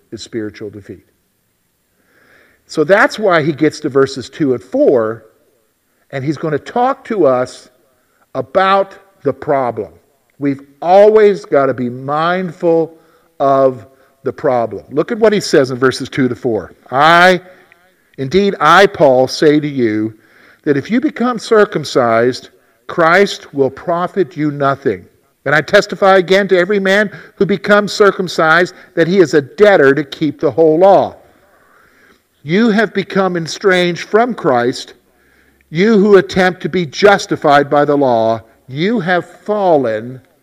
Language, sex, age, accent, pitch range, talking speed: English, male, 50-69, American, 135-195 Hz, 145 wpm